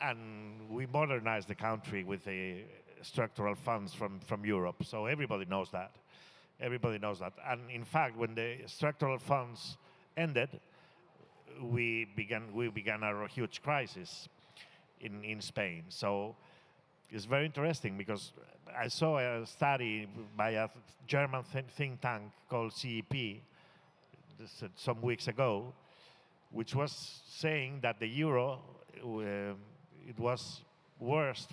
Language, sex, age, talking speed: French, male, 50-69, 125 wpm